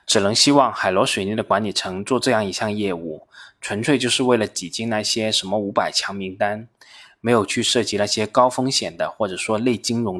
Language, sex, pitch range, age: Chinese, male, 105-125 Hz, 20-39